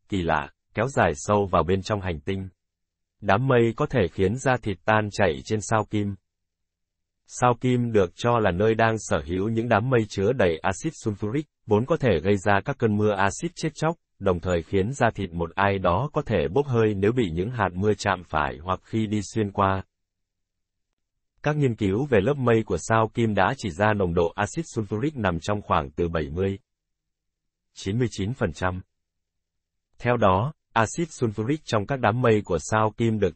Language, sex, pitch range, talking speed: Vietnamese, male, 90-120 Hz, 190 wpm